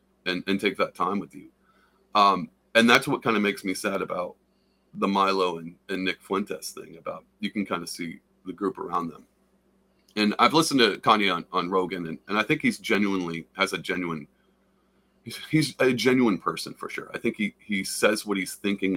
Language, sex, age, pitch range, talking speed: English, male, 30-49, 95-120 Hz, 205 wpm